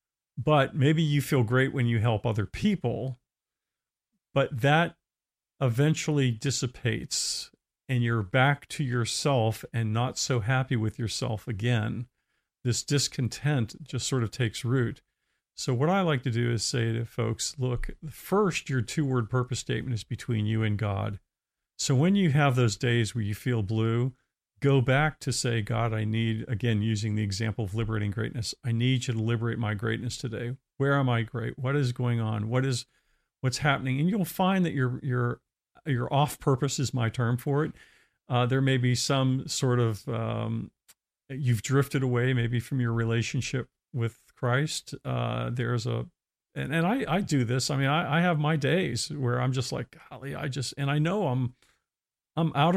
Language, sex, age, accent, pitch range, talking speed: English, male, 50-69, American, 115-140 Hz, 180 wpm